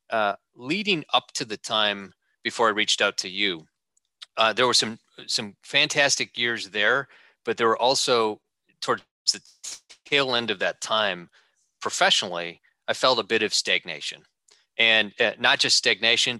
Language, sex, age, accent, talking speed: English, male, 30-49, American, 155 wpm